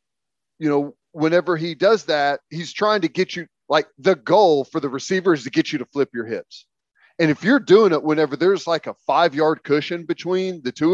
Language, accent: English, American